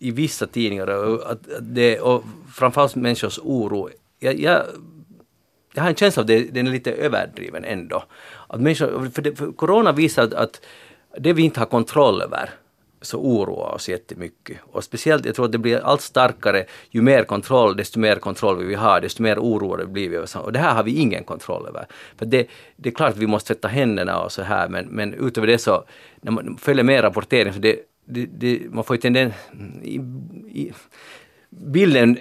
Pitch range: 110-140 Hz